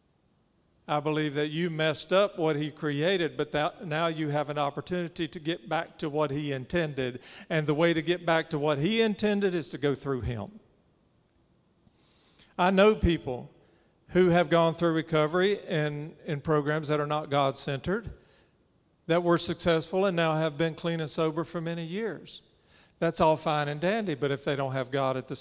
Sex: male